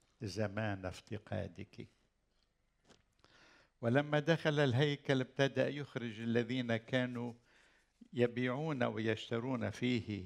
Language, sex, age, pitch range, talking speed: Arabic, male, 60-79, 110-140 Hz, 70 wpm